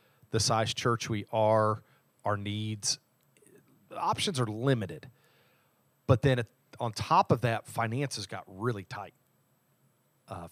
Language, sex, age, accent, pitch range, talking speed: English, male, 40-59, American, 105-130 Hz, 120 wpm